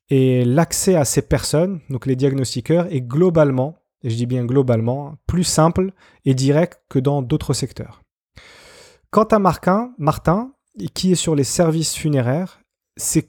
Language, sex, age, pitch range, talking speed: French, male, 30-49, 125-170 Hz, 150 wpm